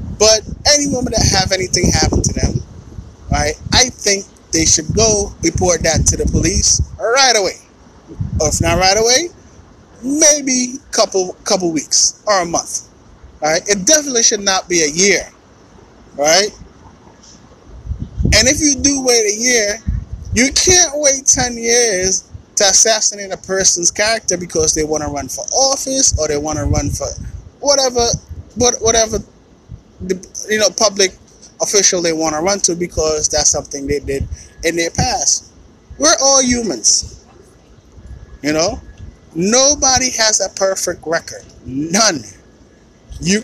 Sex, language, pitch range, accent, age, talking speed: male, English, 170-250 Hz, American, 20-39, 145 wpm